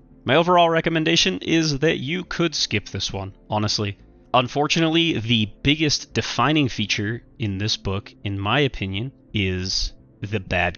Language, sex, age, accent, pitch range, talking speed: English, male, 30-49, American, 100-130 Hz, 140 wpm